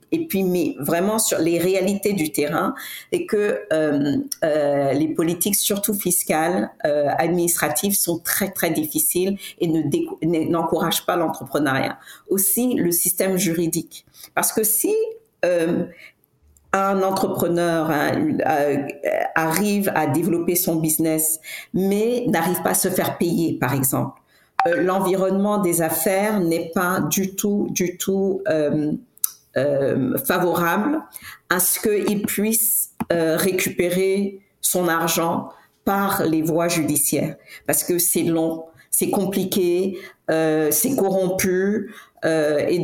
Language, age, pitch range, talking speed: French, 50-69, 160-195 Hz, 125 wpm